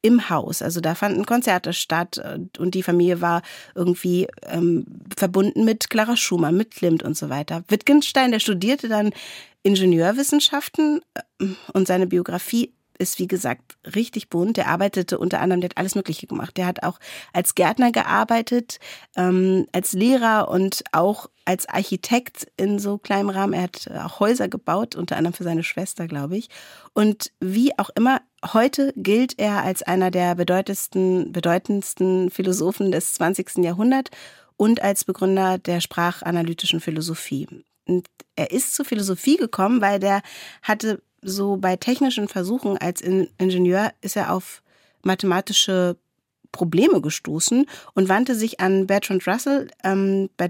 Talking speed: 145 wpm